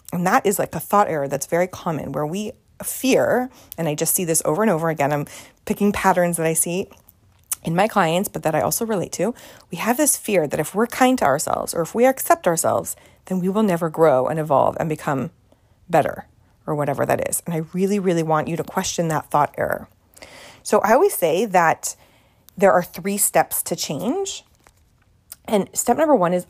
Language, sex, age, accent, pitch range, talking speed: English, female, 30-49, American, 155-215 Hz, 210 wpm